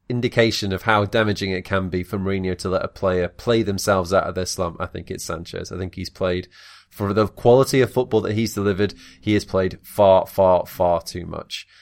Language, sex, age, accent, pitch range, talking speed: English, male, 20-39, British, 90-105 Hz, 220 wpm